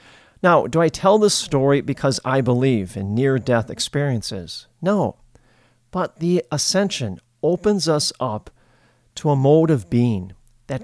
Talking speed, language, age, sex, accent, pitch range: 140 wpm, English, 40-59, male, American, 120-155 Hz